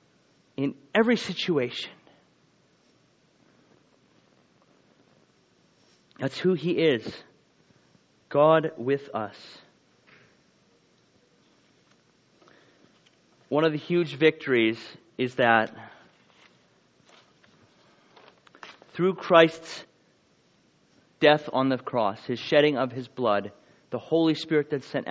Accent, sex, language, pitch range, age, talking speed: American, male, English, 125-175 Hz, 30-49, 80 wpm